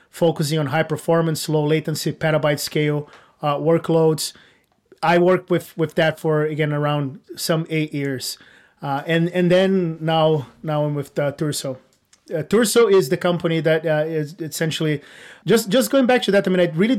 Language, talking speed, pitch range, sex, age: English, 175 wpm, 155-180 Hz, male, 30-49